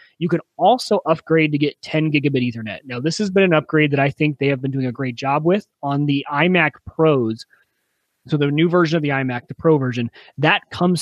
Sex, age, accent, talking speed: male, 30-49, American, 230 wpm